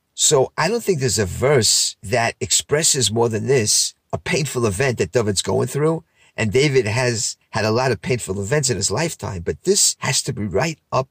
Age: 50-69